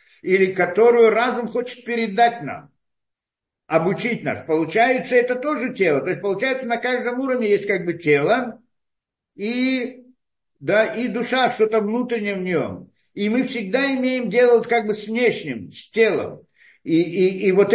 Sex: male